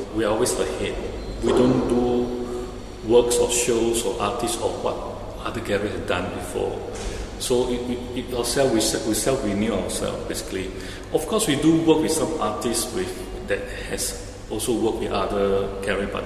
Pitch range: 95-120 Hz